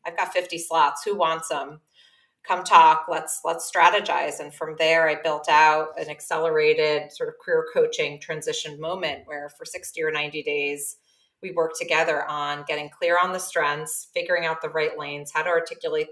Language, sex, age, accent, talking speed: English, female, 30-49, American, 180 wpm